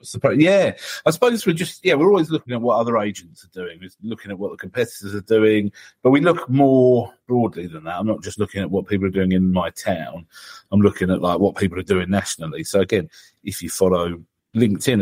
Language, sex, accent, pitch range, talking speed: English, male, British, 95-105 Hz, 230 wpm